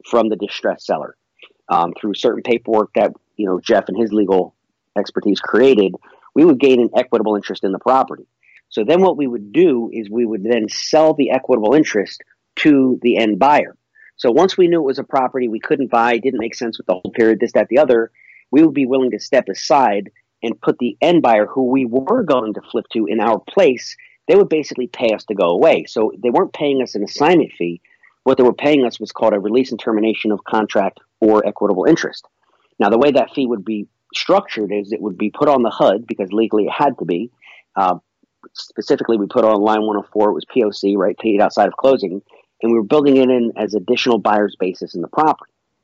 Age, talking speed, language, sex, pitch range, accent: 40-59, 225 wpm, English, male, 105-130 Hz, American